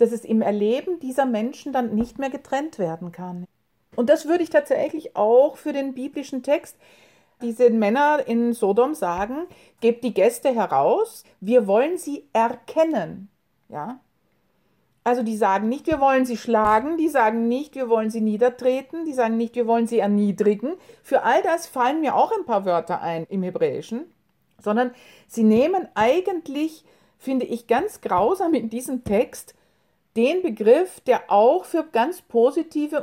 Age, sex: 50-69, female